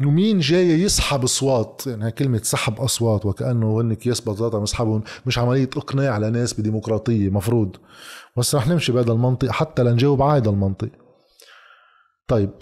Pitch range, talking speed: 115-150 Hz, 145 wpm